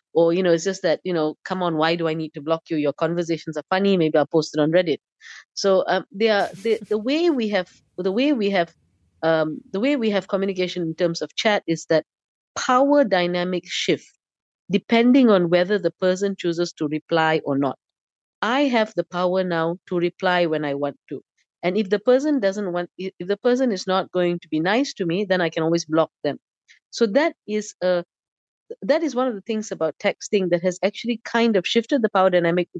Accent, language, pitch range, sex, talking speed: Indian, English, 165-210 Hz, female, 220 wpm